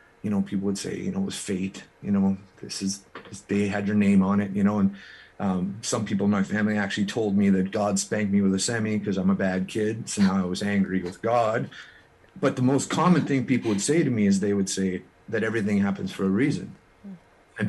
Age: 30-49